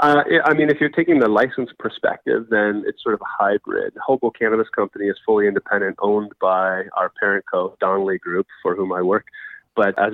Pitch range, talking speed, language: 95-110 Hz, 200 wpm, English